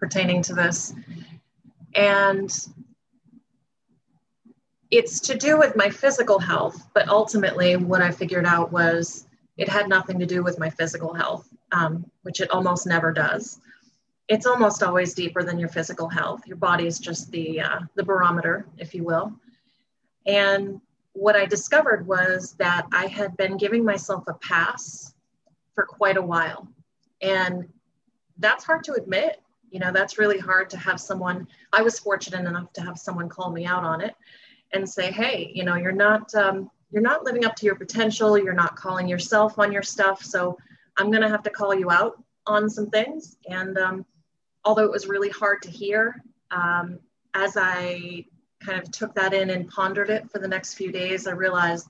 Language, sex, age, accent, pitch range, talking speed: English, female, 30-49, American, 175-210 Hz, 180 wpm